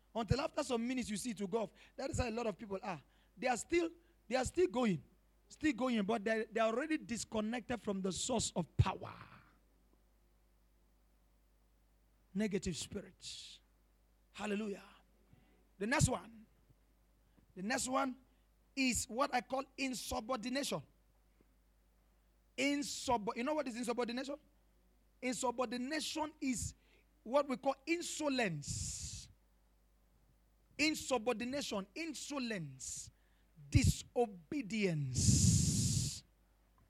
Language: English